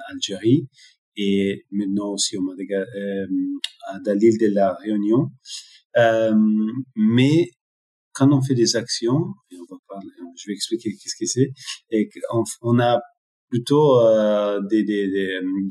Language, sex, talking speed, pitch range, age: French, male, 140 wpm, 100-135 Hz, 30-49